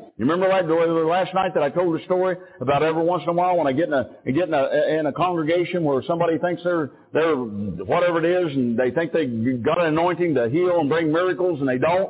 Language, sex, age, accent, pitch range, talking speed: English, male, 50-69, American, 150-210 Hz, 255 wpm